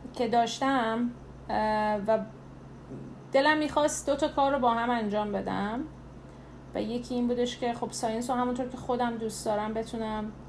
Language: Persian